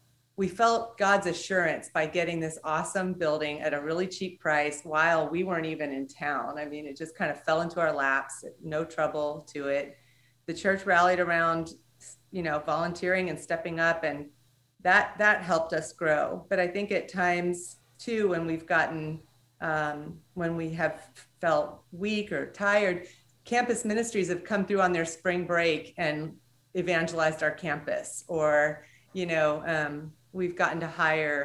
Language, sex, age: English, female, 40-59